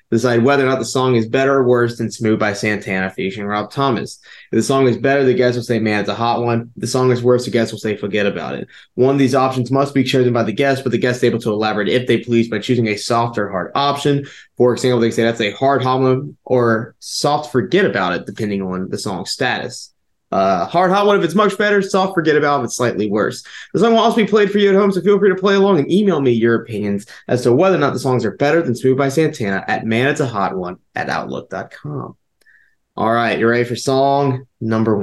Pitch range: 115-145 Hz